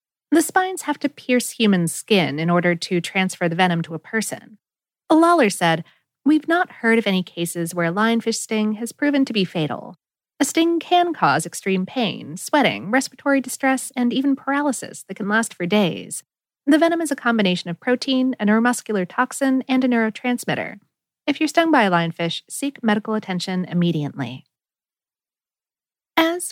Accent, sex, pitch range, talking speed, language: American, female, 185-280 Hz, 170 wpm, English